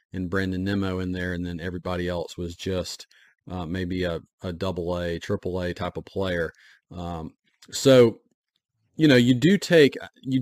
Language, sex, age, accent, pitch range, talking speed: English, male, 40-59, American, 95-110 Hz, 160 wpm